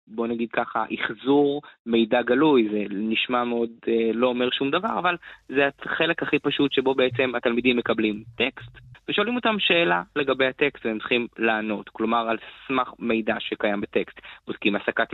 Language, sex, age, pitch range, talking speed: Hebrew, male, 20-39, 110-145 Hz, 160 wpm